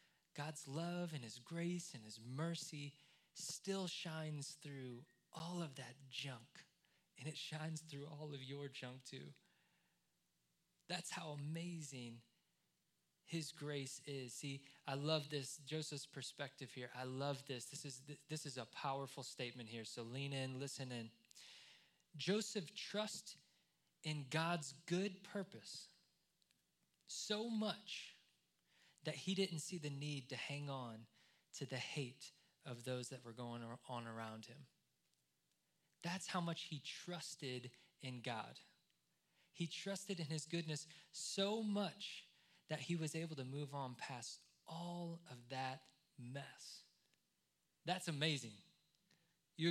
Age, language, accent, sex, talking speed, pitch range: 20-39, English, American, male, 135 wpm, 135-170 Hz